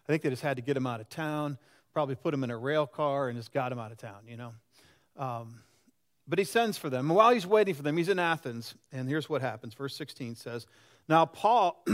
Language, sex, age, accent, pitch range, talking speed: English, male, 40-59, American, 125-175 Hz, 250 wpm